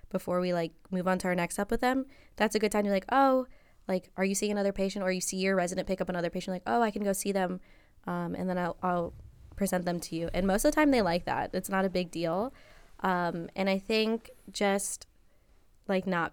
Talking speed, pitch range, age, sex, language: 255 wpm, 175-200 Hz, 20-39, female, English